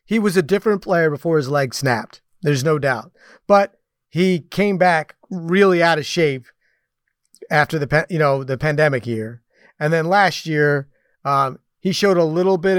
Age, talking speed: 30-49, 175 wpm